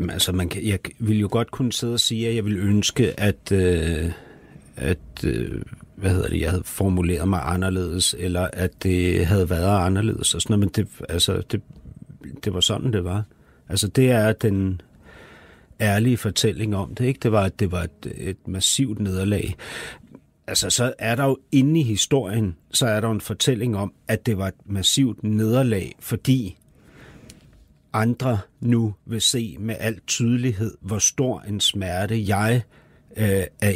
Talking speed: 170 wpm